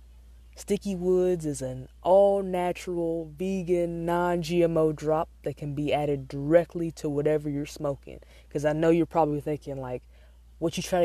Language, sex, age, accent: English, female, 20-39, American